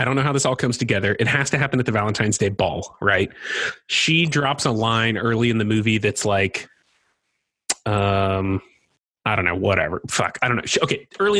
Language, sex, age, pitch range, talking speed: English, male, 20-39, 110-140 Hz, 205 wpm